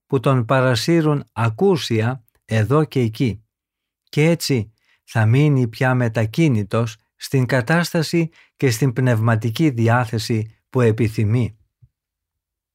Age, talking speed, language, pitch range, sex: 50-69, 100 wpm, Greek, 110-145 Hz, male